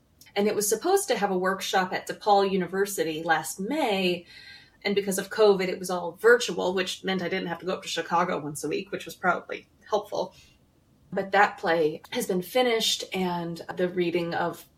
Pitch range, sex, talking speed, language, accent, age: 170-200 Hz, female, 195 wpm, English, American, 20-39